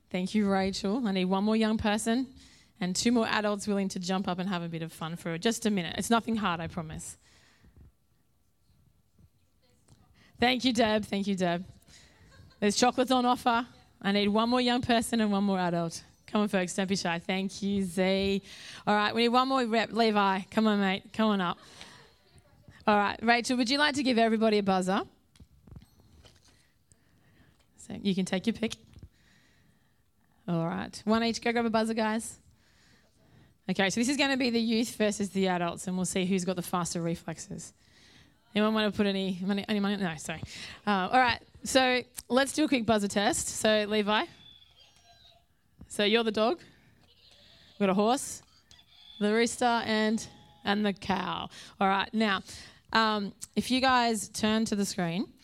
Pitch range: 190-230 Hz